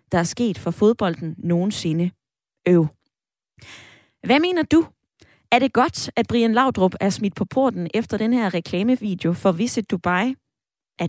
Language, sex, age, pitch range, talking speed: Danish, female, 20-39, 180-245 Hz, 150 wpm